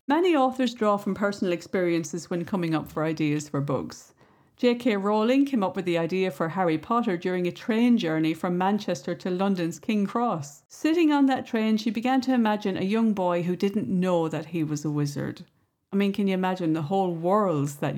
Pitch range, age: 170-235 Hz, 50-69